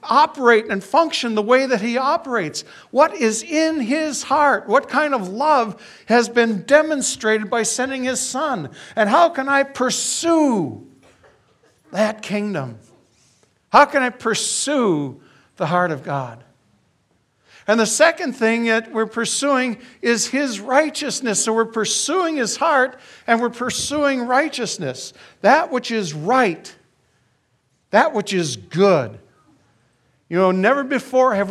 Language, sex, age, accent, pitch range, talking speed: English, male, 60-79, American, 155-245 Hz, 135 wpm